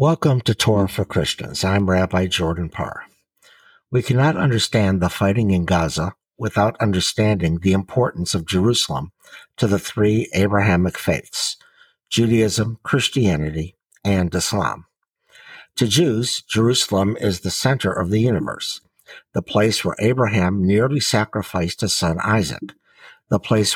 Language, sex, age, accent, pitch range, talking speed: English, male, 60-79, American, 95-125 Hz, 130 wpm